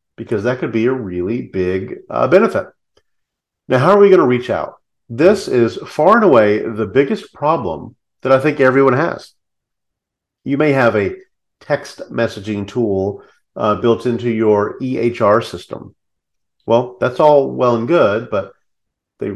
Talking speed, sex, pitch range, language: 160 wpm, male, 105-140 Hz, English